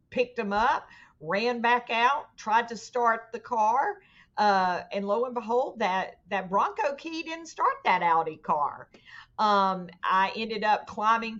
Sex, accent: female, American